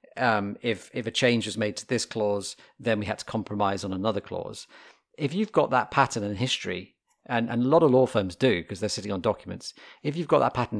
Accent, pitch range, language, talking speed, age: British, 100-125 Hz, English, 240 wpm, 40-59